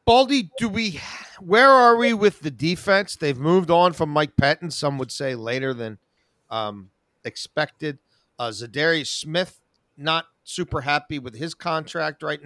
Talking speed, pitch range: 145 wpm, 135-180 Hz